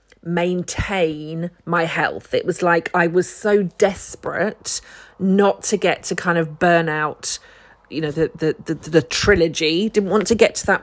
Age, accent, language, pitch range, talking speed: 40-59, British, English, 160-190 Hz, 170 wpm